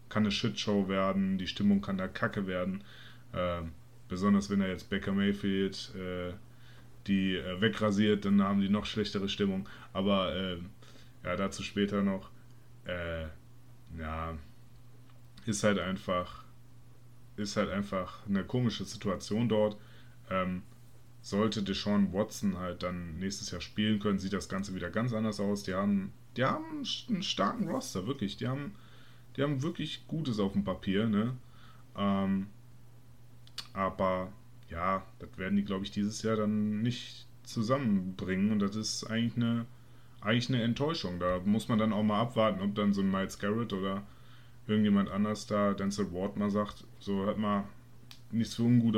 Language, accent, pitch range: German, German, 100-120 Hz